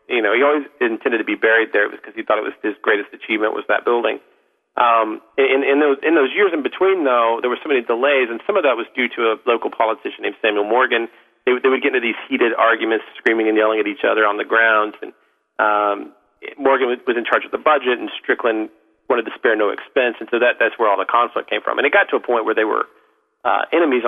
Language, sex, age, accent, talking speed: English, male, 40-59, American, 260 wpm